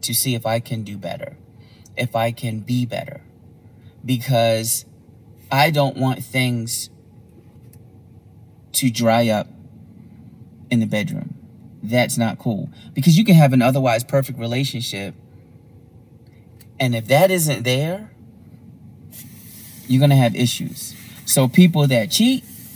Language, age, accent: English, 30-49, American